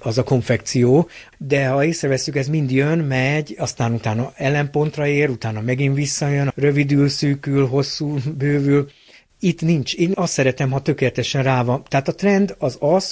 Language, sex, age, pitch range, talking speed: Hungarian, male, 60-79, 125-145 Hz, 160 wpm